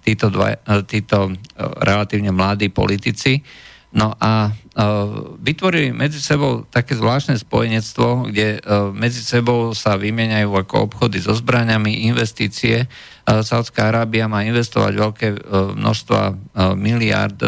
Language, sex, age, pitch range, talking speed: Slovak, male, 50-69, 100-120 Hz, 125 wpm